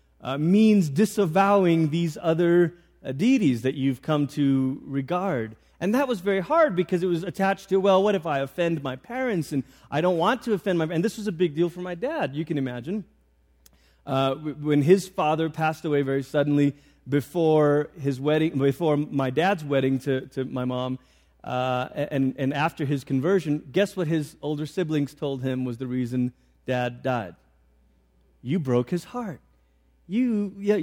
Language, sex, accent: English, male, American